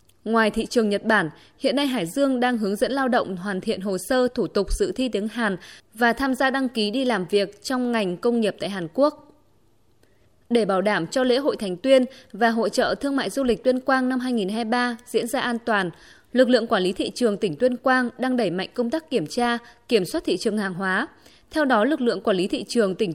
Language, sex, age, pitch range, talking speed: Vietnamese, female, 20-39, 200-265 Hz, 240 wpm